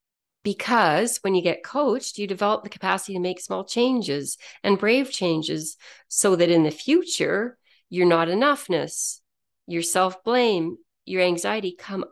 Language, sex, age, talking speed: English, female, 40-59, 150 wpm